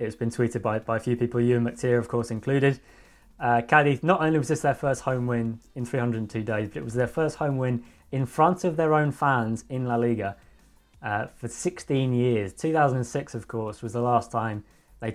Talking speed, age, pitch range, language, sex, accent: 220 wpm, 20-39, 115-135 Hz, English, male, British